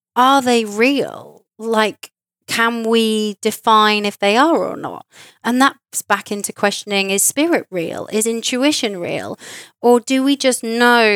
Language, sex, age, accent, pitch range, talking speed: English, female, 30-49, British, 190-235 Hz, 150 wpm